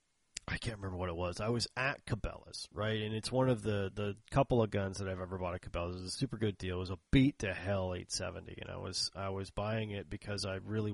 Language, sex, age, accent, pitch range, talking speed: English, male, 30-49, American, 95-120 Hz, 275 wpm